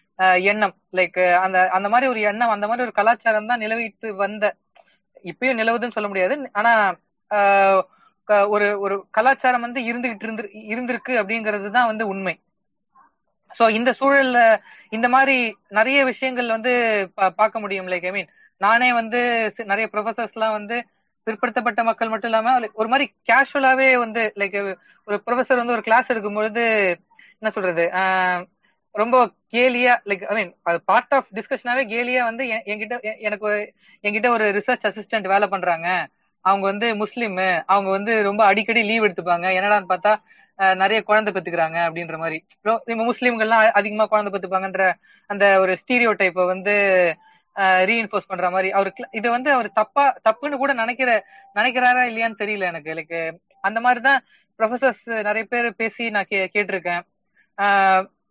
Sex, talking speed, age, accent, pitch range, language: female, 135 wpm, 20-39, native, 195-240 Hz, Tamil